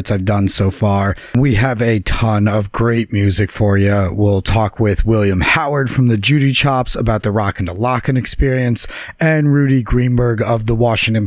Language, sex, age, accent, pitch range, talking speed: English, male, 30-49, American, 100-125 Hz, 180 wpm